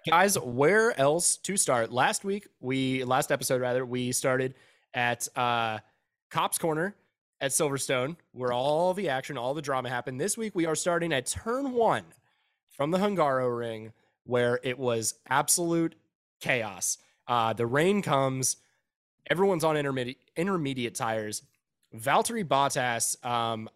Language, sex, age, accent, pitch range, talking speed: English, male, 20-39, American, 125-175 Hz, 140 wpm